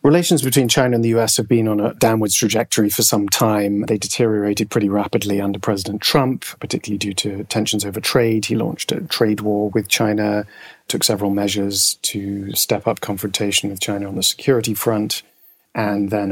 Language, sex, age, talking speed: English, male, 40-59, 185 wpm